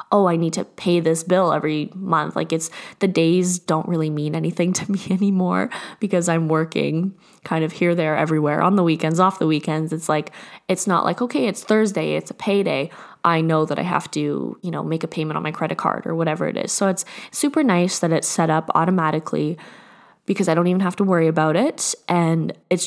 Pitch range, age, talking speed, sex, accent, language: 160-195 Hz, 20-39, 220 wpm, female, American, English